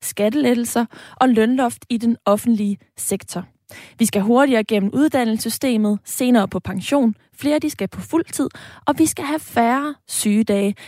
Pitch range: 210-250 Hz